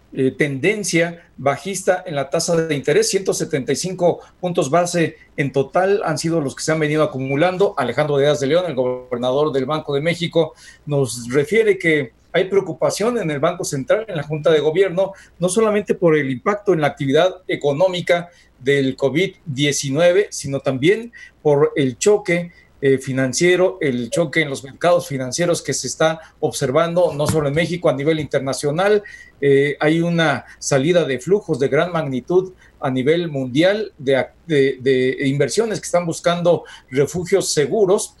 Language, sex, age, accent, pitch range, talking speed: Spanish, male, 40-59, Mexican, 140-175 Hz, 160 wpm